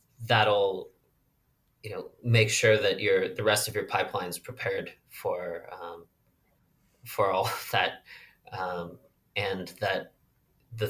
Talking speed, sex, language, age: 125 wpm, male, English, 20-39